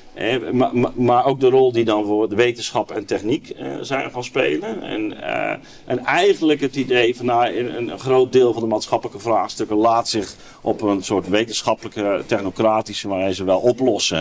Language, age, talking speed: Dutch, 50-69, 180 wpm